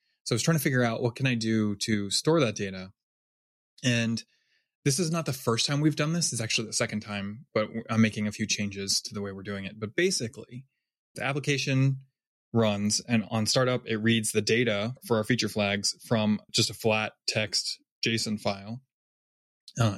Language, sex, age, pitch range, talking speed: English, male, 20-39, 105-125 Hz, 200 wpm